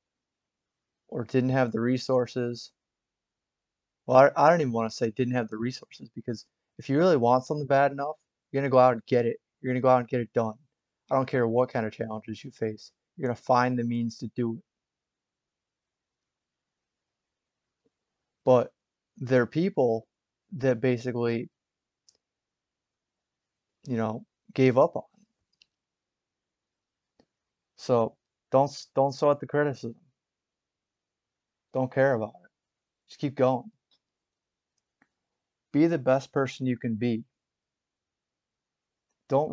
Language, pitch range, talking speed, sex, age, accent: English, 115-135 Hz, 145 wpm, male, 30-49, American